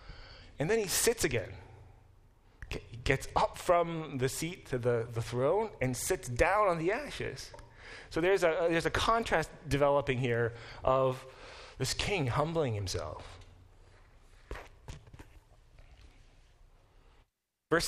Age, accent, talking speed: 30-49, American, 125 wpm